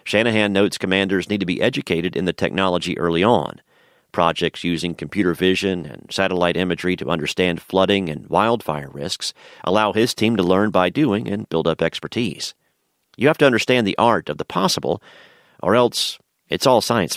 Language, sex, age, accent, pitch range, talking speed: English, male, 40-59, American, 90-115 Hz, 175 wpm